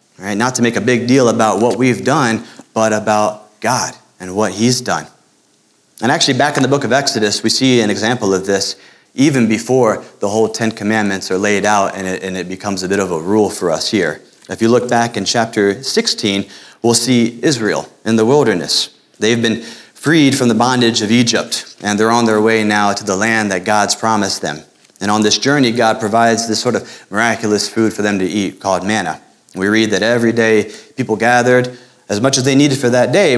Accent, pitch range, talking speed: American, 100-120 Hz, 210 wpm